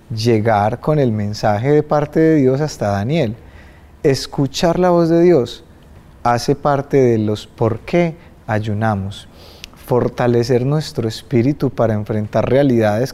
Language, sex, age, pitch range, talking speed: Spanish, male, 30-49, 105-135 Hz, 130 wpm